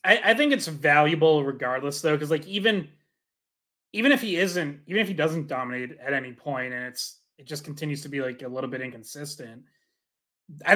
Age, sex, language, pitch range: 20-39, male, English, 135-170 Hz